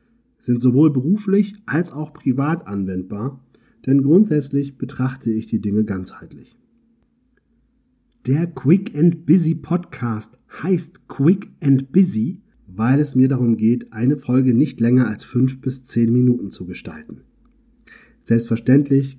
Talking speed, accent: 125 wpm, German